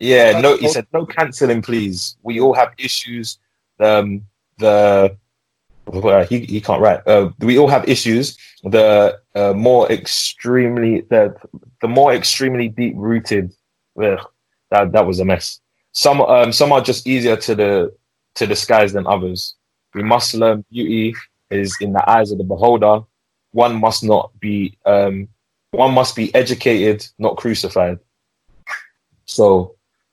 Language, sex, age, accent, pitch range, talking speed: English, male, 20-39, British, 95-120 Hz, 150 wpm